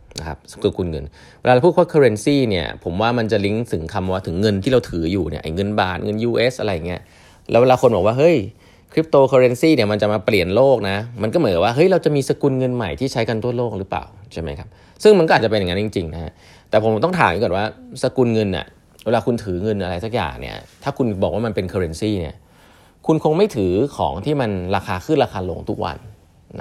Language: Thai